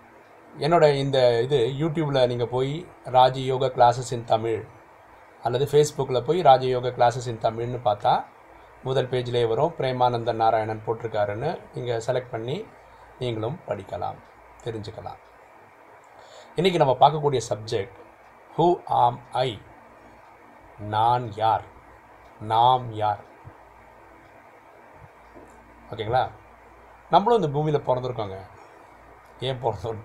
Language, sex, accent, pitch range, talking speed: Tamil, male, native, 115-140 Hz, 95 wpm